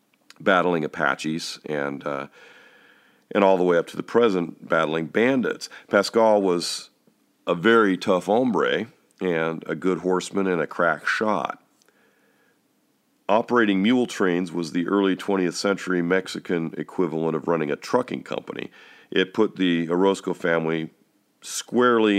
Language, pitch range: English, 80-100 Hz